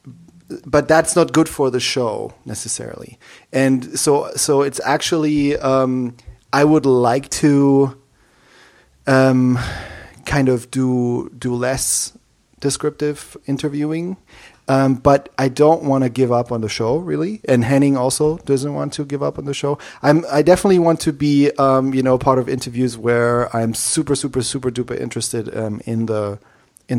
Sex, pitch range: male, 120-145 Hz